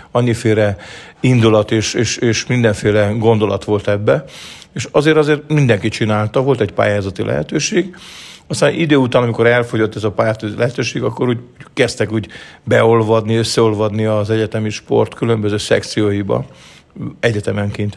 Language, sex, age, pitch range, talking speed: Hungarian, male, 50-69, 105-120 Hz, 130 wpm